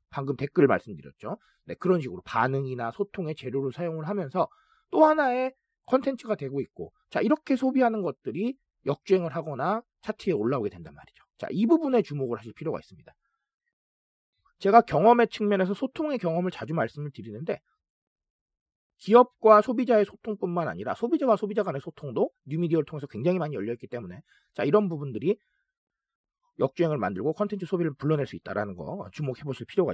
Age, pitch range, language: 40-59, 145-235 Hz, Korean